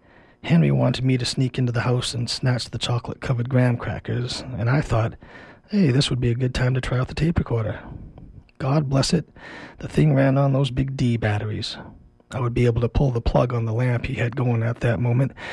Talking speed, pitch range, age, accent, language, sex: 225 wpm, 110-130 Hz, 40-59, American, English, male